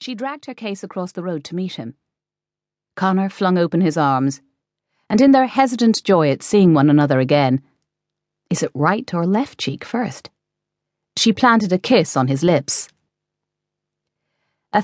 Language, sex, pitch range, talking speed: English, female, 155-205 Hz, 160 wpm